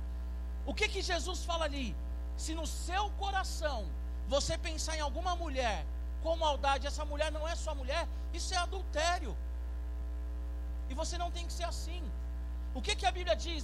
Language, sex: Portuguese, male